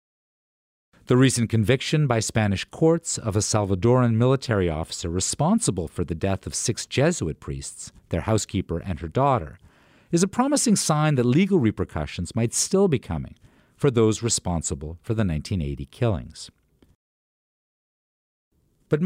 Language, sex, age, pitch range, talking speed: English, male, 50-69, 95-145 Hz, 135 wpm